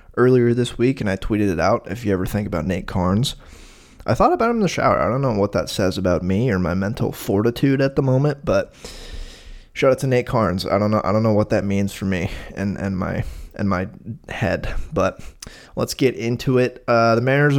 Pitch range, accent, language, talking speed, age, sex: 100-130 Hz, American, English, 230 wpm, 20-39, male